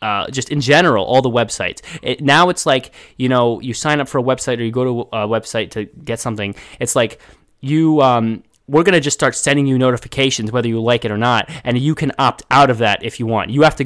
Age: 20-39